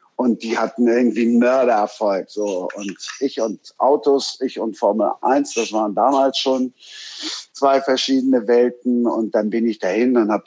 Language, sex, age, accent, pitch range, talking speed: German, male, 50-69, German, 110-125 Hz, 165 wpm